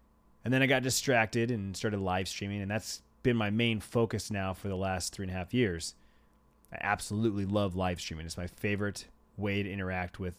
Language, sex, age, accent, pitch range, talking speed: English, male, 30-49, American, 95-125 Hz, 210 wpm